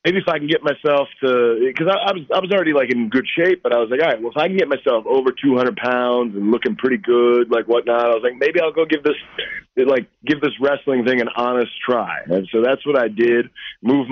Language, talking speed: English, 270 wpm